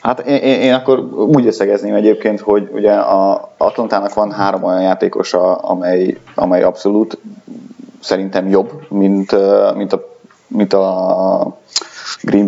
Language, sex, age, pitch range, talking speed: Hungarian, male, 30-49, 95-115 Hz, 130 wpm